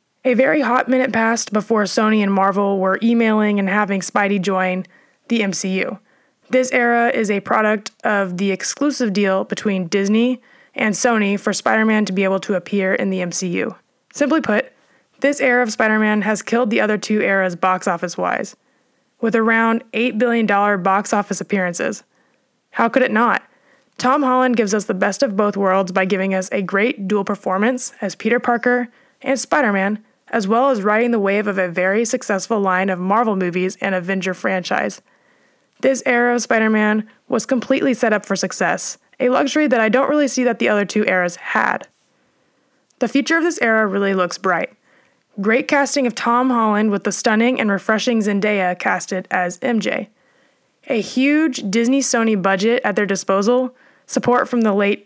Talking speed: 175 wpm